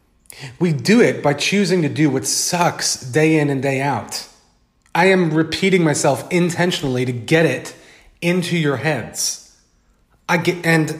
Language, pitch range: English, 125-160 Hz